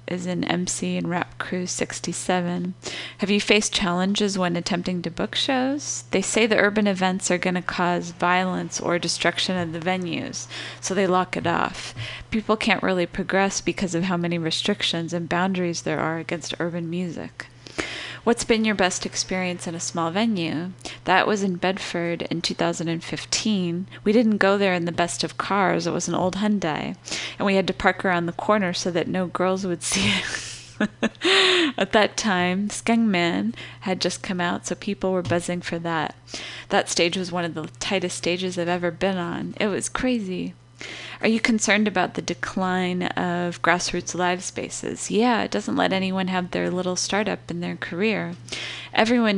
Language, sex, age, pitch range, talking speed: English, female, 30-49, 170-195 Hz, 180 wpm